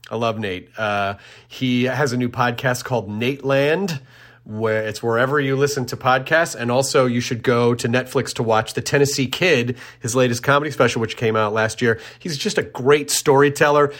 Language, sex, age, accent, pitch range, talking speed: English, male, 30-49, American, 120-150 Hz, 195 wpm